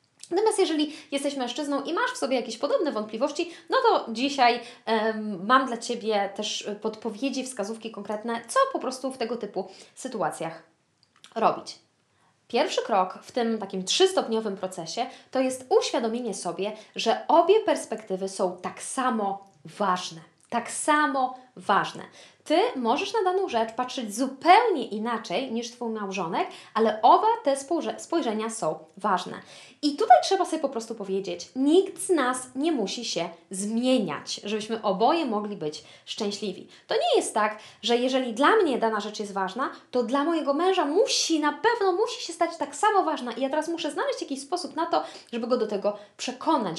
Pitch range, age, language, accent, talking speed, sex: 215-320 Hz, 20-39, Polish, native, 160 wpm, female